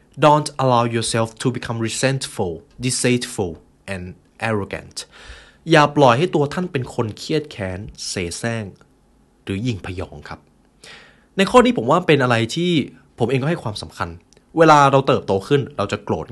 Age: 20-39